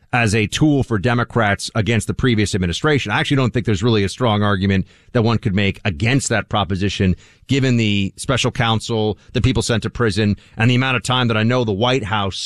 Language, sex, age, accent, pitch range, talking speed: English, male, 40-59, American, 110-150 Hz, 215 wpm